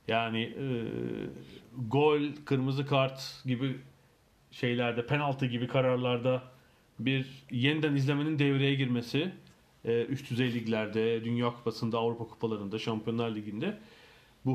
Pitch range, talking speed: 120-145 Hz, 100 wpm